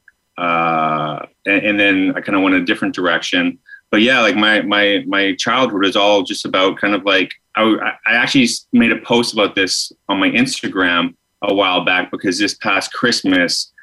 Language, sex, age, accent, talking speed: English, male, 30-49, American, 185 wpm